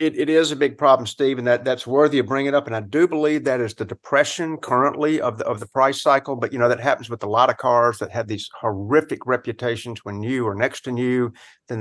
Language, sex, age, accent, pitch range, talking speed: English, male, 50-69, American, 115-140 Hz, 265 wpm